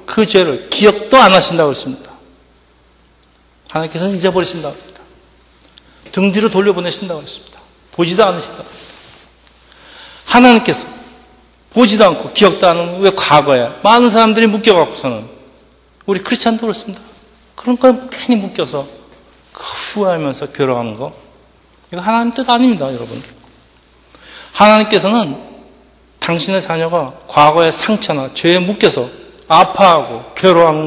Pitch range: 125-205 Hz